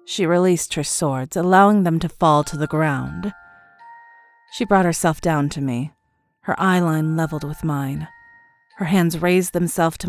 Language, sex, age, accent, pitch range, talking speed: English, female, 30-49, American, 150-225 Hz, 160 wpm